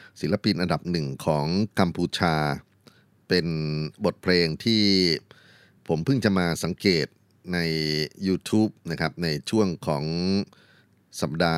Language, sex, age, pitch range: Thai, male, 30-49, 80-100 Hz